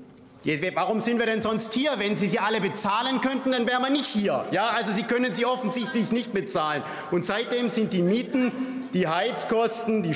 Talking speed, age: 195 wpm, 50-69